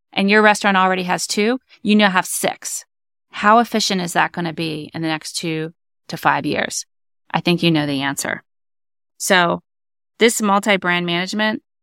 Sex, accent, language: female, American, English